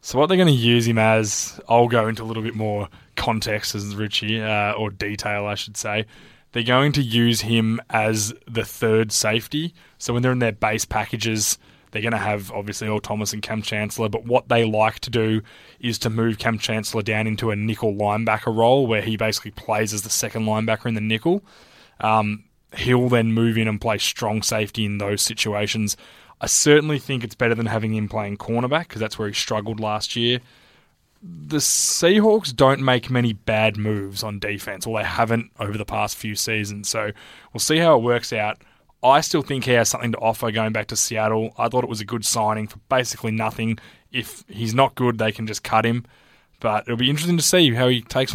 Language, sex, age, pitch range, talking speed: English, male, 20-39, 105-120 Hz, 210 wpm